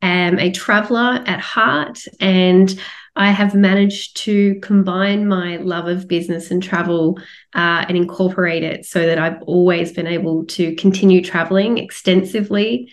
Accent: Australian